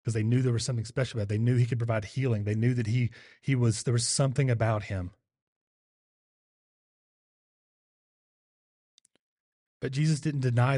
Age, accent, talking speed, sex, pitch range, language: 30-49, American, 165 wpm, male, 110-135 Hz, English